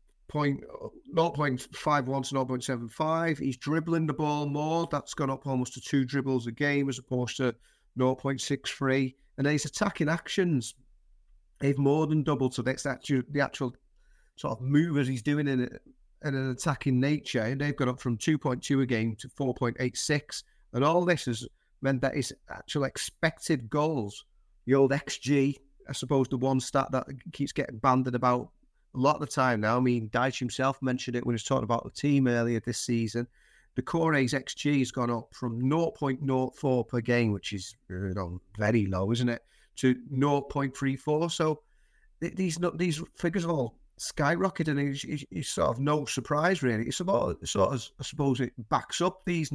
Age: 40-59